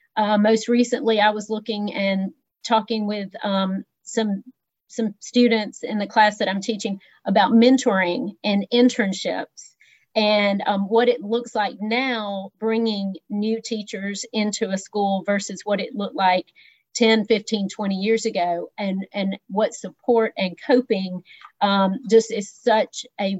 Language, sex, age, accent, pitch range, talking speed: English, female, 40-59, American, 190-220 Hz, 145 wpm